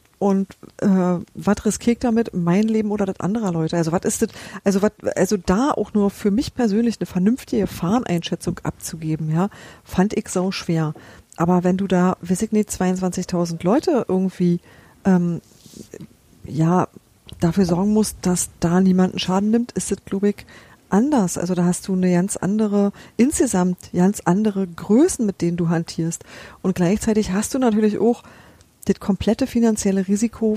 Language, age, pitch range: German, 40-59, 180-220 Hz